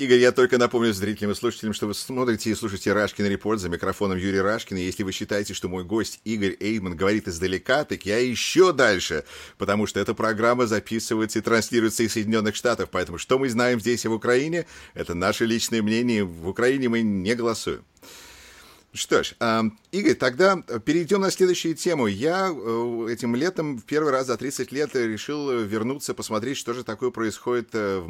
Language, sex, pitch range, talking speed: English, male, 105-130 Hz, 180 wpm